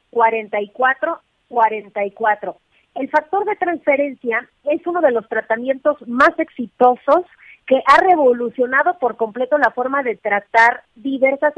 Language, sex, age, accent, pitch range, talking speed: Spanish, female, 40-59, Mexican, 225-290 Hz, 120 wpm